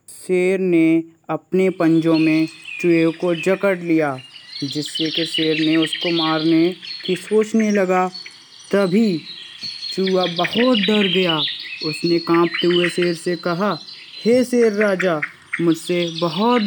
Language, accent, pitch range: Hindi, native, 155-185 Hz